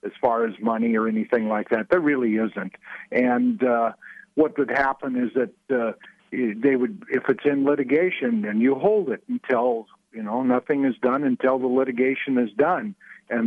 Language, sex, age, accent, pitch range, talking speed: English, male, 50-69, American, 120-160 Hz, 185 wpm